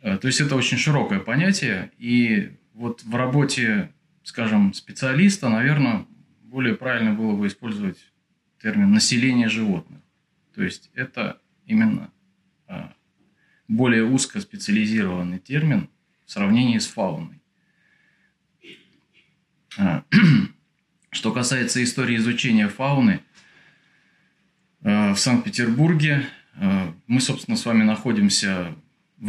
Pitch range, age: 125-205 Hz, 20-39